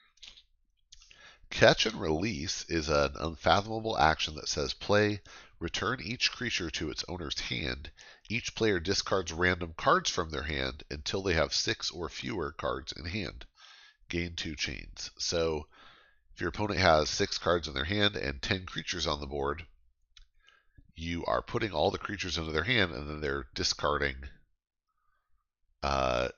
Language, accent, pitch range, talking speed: English, American, 70-95 Hz, 150 wpm